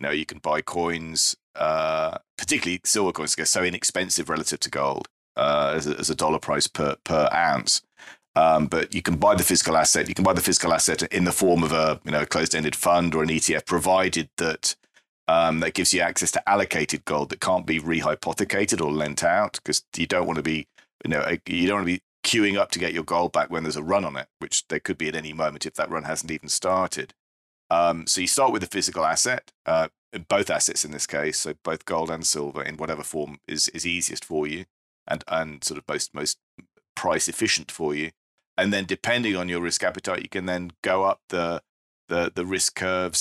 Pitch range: 80-90 Hz